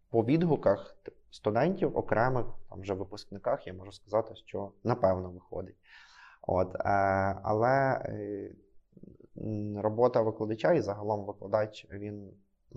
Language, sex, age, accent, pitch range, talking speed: Ukrainian, male, 20-39, native, 100-115 Hz, 95 wpm